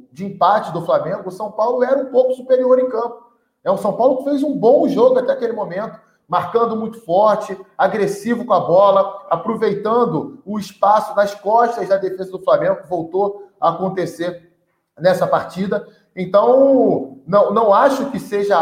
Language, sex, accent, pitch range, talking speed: Portuguese, male, Brazilian, 175-215 Hz, 170 wpm